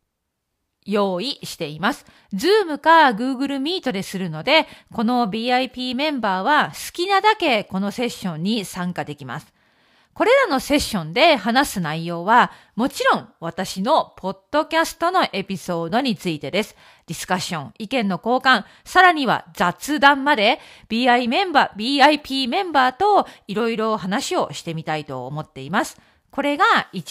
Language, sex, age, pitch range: Japanese, female, 40-59, 185-300 Hz